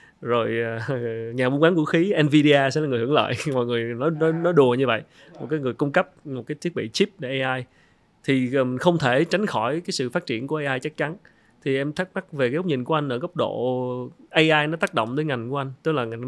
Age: 20-39